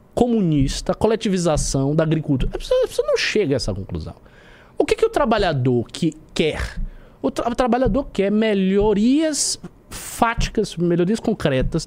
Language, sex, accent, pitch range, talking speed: Portuguese, male, Brazilian, 135-225 Hz, 130 wpm